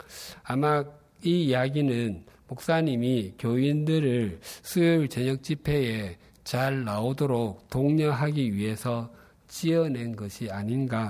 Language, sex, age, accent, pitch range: Korean, male, 50-69, native, 115-150 Hz